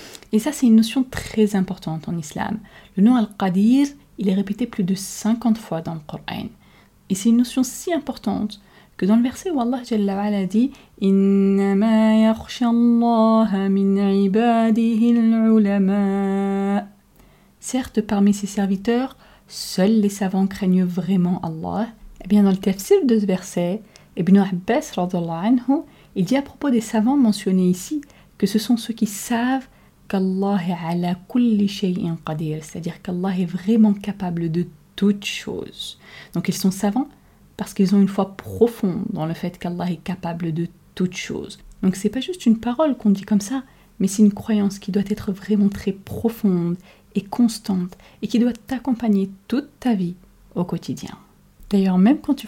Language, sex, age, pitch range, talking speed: French, female, 30-49, 190-230 Hz, 155 wpm